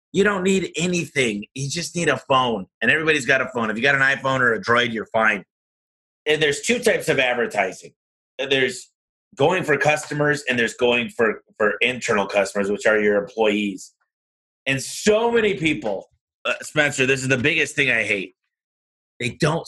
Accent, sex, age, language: American, male, 30-49, English